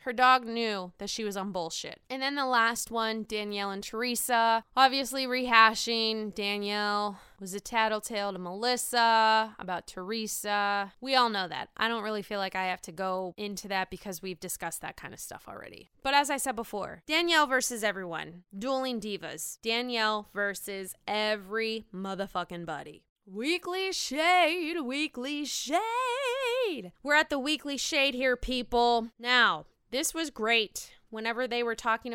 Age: 20-39